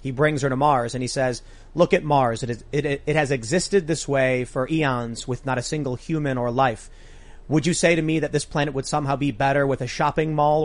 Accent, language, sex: American, English, male